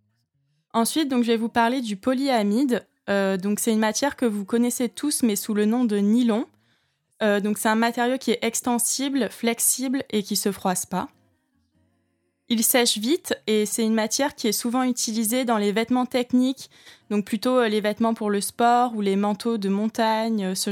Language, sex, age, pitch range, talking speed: French, female, 20-39, 215-255 Hz, 185 wpm